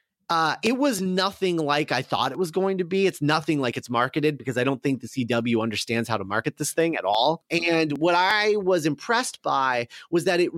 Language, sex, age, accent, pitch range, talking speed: English, male, 30-49, American, 130-175 Hz, 225 wpm